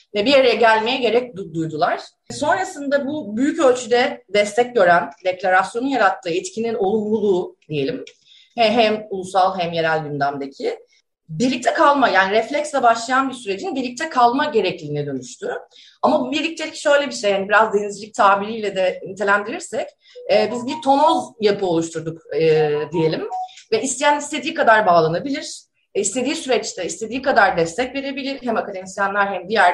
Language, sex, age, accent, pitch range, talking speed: Turkish, female, 30-49, native, 170-260 Hz, 135 wpm